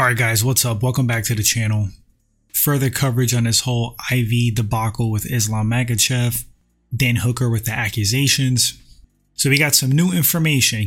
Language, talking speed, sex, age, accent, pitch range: English, 170 wpm, male, 20-39, American, 115-135 Hz